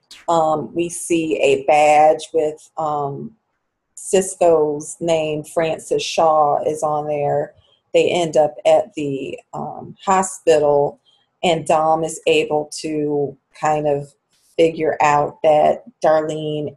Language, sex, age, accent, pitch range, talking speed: English, female, 30-49, American, 150-170 Hz, 115 wpm